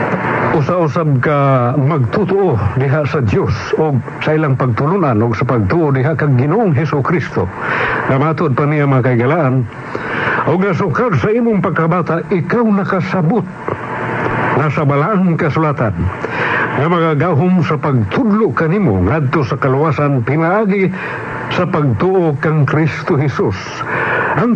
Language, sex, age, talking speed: Filipino, male, 60-79, 115 wpm